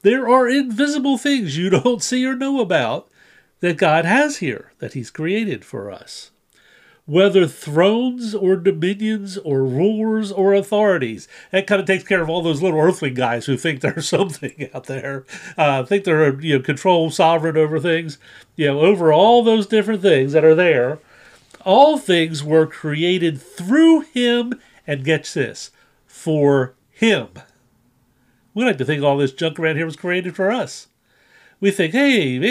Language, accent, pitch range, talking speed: English, American, 140-200 Hz, 165 wpm